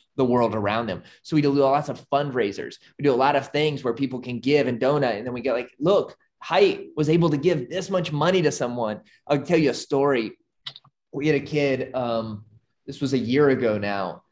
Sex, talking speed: male, 225 wpm